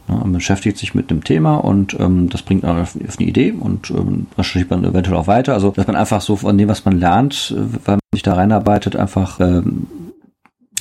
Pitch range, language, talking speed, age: 90-115 Hz, German, 230 wpm, 40-59